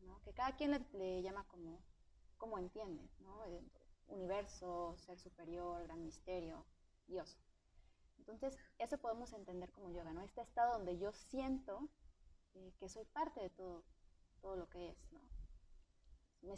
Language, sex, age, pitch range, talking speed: Spanish, female, 20-39, 185-240 Hz, 150 wpm